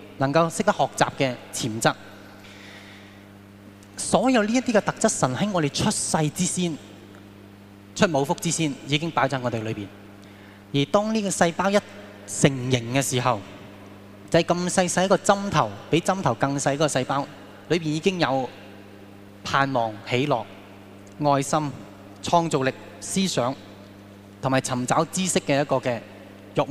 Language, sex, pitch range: Chinese, male, 100-160 Hz